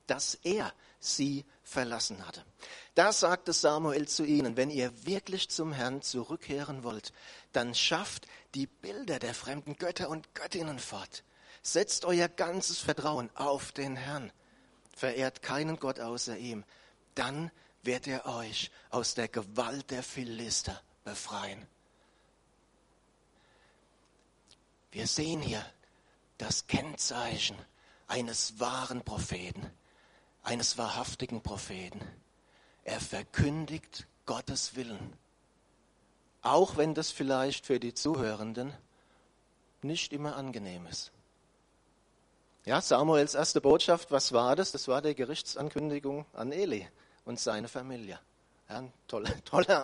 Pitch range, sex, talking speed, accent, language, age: 120-155 Hz, male, 115 wpm, German, German, 40-59